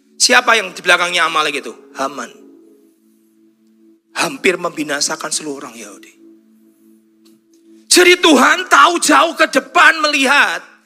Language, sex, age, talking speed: Indonesian, male, 40-59, 105 wpm